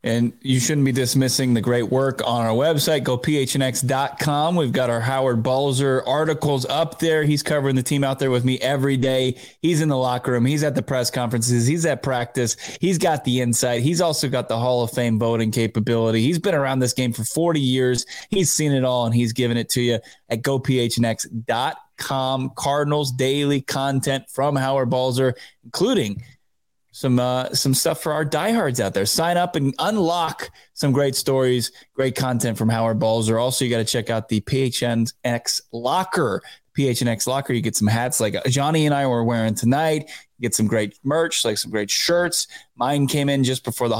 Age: 20-39